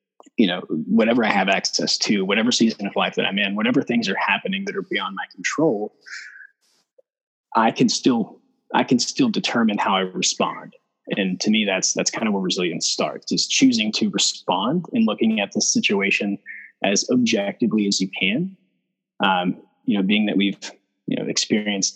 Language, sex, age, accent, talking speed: English, male, 20-39, American, 180 wpm